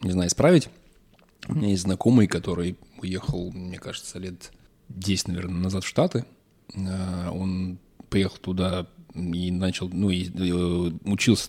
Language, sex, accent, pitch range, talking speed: Russian, male, native, 90-110 Hz, 130 wpm